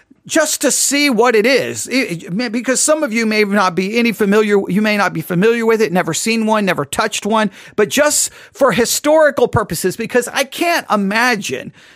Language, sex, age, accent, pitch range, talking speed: English, male, 40-59, American, 185-260 Hz, 185 wpm